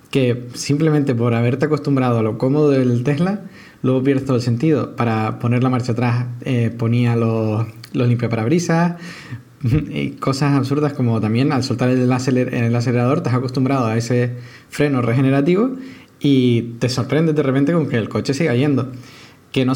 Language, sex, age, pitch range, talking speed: Spanish, male, 20-39, 120-145 Hz, 170 wpm